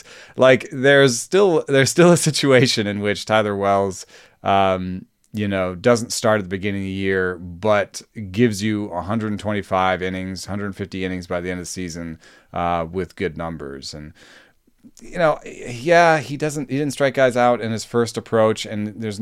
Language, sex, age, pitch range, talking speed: English, male, 30-49, 95-120 Hz, 175 wpm